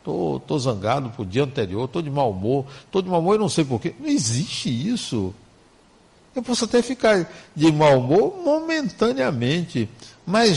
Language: Portuguese